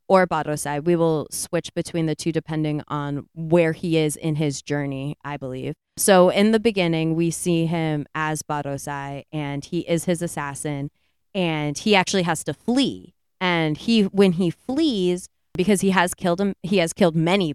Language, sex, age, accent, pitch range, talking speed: English, female, 20-39, American, 150-180 Hz, 180 wpm